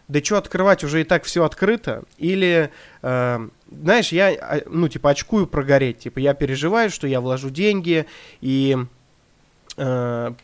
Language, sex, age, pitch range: Russian, male, 20-39, 135-175 Hz